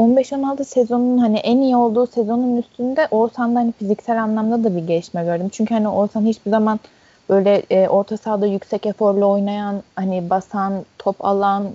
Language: Turkish